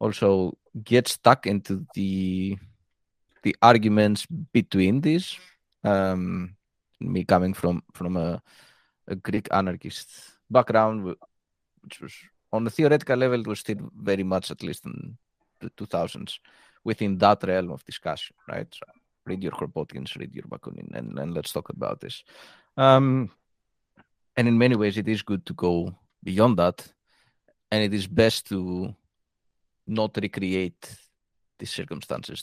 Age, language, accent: 20-39, English, Spanish